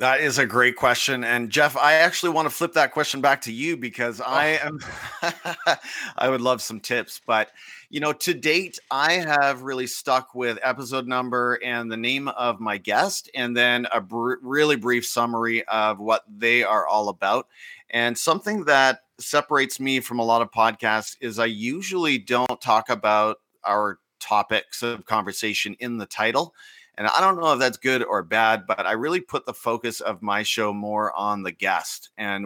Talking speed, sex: 185 wpm, male